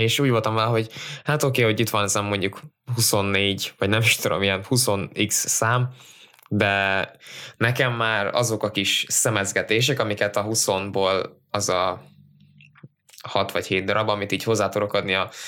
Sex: male